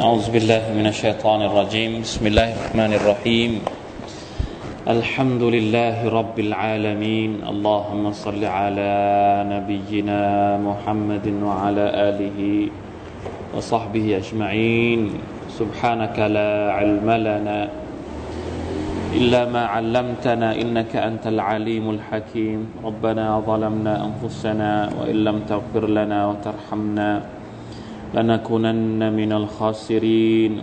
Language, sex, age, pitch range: Thai, male, 20-39, 105-115 Hz